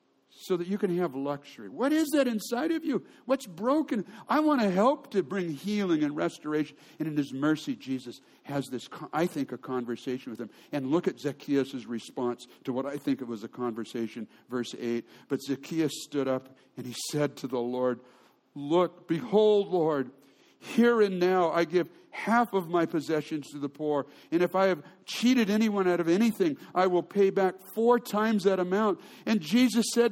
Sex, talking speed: male, 190 wpm